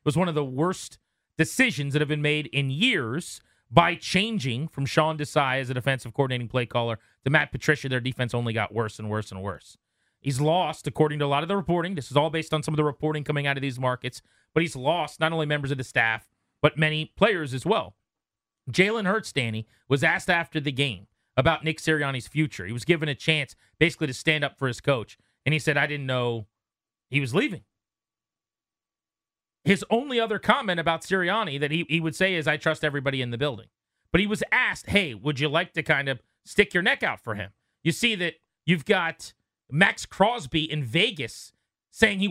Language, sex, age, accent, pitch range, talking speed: English, male, 30-49, American, 135-175 Hz, 215 wpm